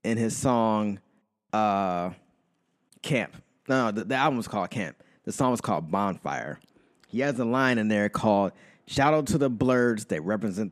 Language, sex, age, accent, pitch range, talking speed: English, male, 20-39, American, 110-135 Hz, 180 wpm